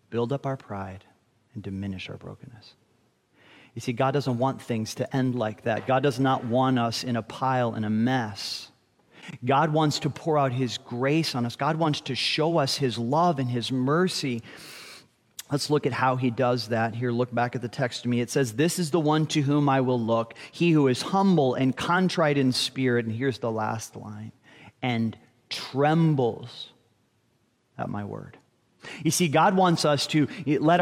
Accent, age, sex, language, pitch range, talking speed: American, 40-59, male, English, 125-180 Hz, 195 wpm